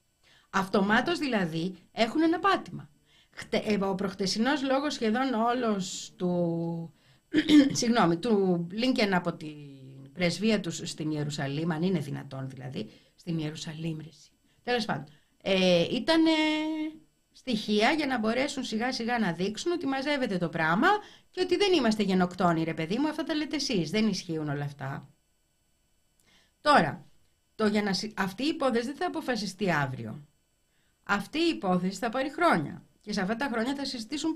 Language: Greek